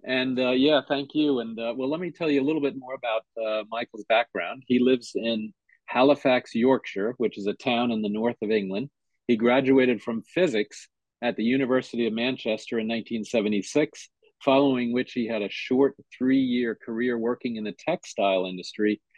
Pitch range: 115-135 Hz